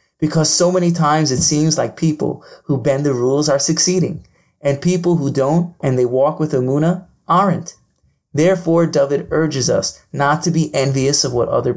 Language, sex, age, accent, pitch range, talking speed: English, male, 30-49, American, 135-165 Hz, 180 wpm